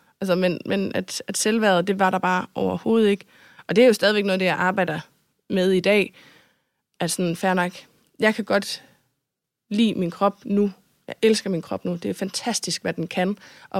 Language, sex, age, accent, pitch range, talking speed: Danish, female, 20-39, native, 195-245 Hz, 195 wpm